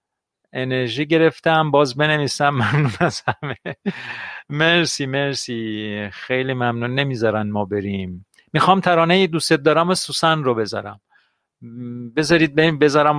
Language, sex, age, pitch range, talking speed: Persian, male, 50-69, 115-155 Hz, 115 wpm